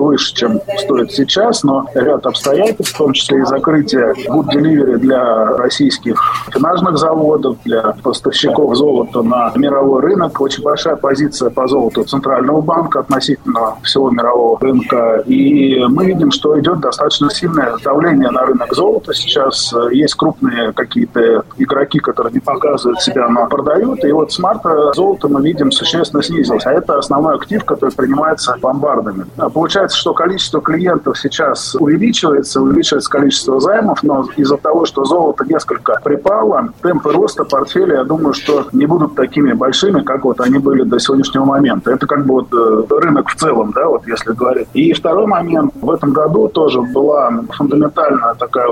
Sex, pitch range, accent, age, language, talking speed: male, 135-200 Hz, native, 20-39, Russian, 155 wpm